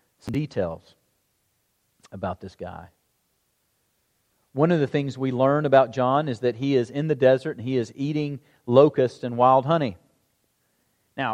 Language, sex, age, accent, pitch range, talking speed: English, male, 40-59, American, 120-140 Hz, 150 wpm